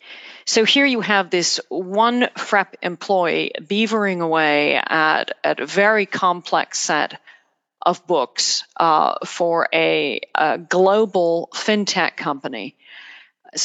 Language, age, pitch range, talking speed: English, 40-59, 175-230 Hz, 115 wpm